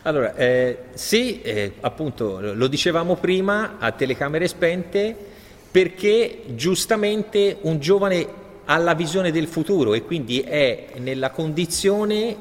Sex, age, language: male, 40-59, Italian